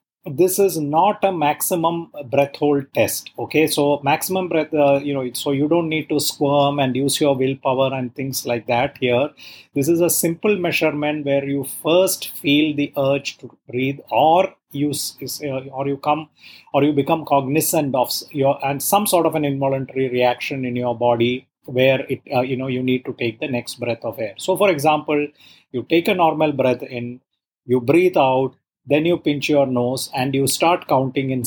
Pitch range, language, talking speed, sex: 125-150 Hz, English, 190 wpm, male